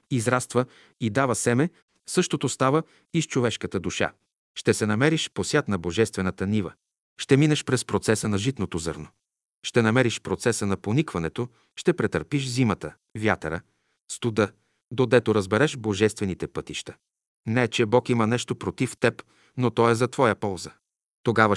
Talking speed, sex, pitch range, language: 145 wpm, male, 105-130 Hz, Bulgarian